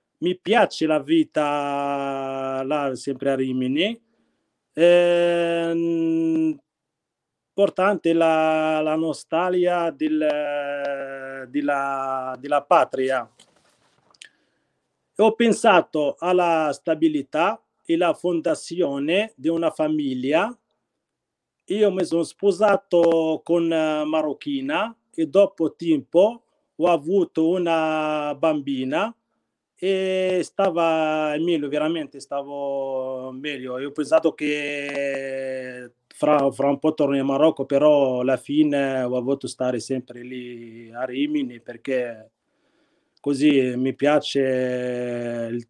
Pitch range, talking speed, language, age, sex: 135-175 Hz, 90 wpm, Italian, 40-59, male